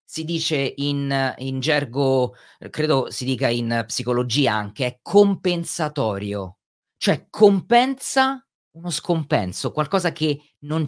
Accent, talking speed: native, 110 wpm